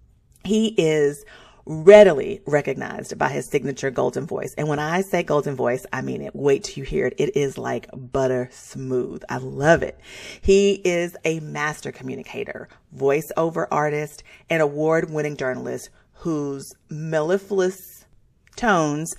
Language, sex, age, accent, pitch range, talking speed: English, female, 40-59, American, 140-185 Hz, 140 wpm